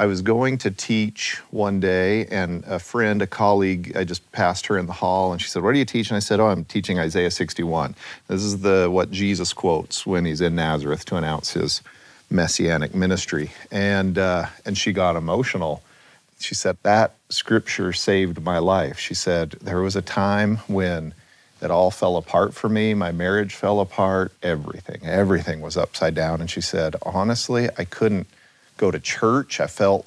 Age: 40-59